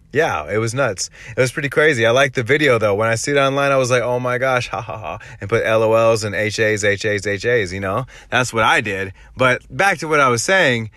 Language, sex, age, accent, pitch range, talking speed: English, male, 30-49, American, 100-135 Hz, 255 wpm